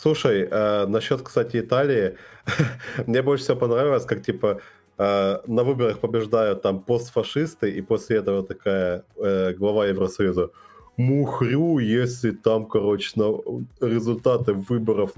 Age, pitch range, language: 30-49, 105-135 Hz, Russian